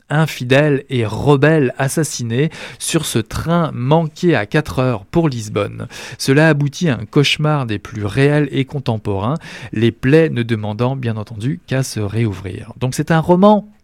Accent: French